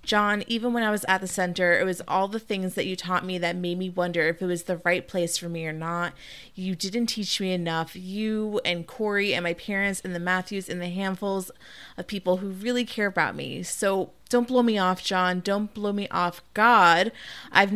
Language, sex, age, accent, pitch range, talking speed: English, female, 20-39, American, 175-205 Hz, 225 wpm